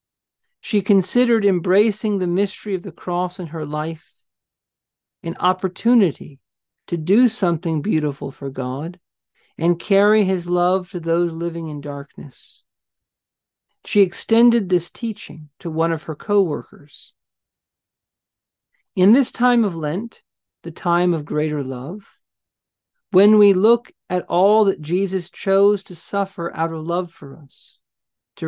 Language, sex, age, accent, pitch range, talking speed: English, male, 50-69, American, 165-200 Hz, 135 wpm